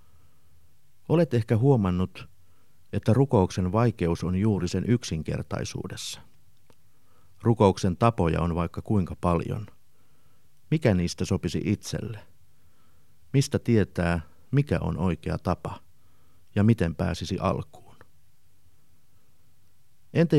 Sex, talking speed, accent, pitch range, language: male, 90 wpm, native, 85-110 Hz, Finnish